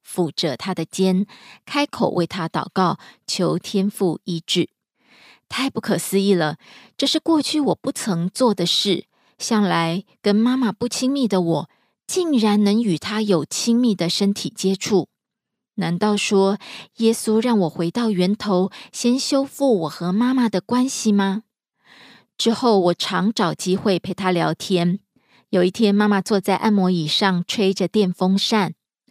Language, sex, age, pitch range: Korean, female, 20-39, 185-230 Hz